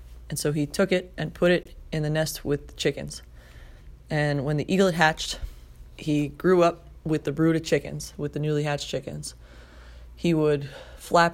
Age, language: 20-39, English